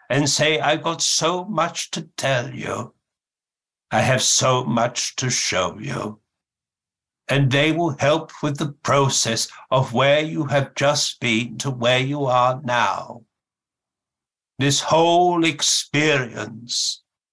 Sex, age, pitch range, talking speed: male, 60-79, 125-145 Hz, 130 wpm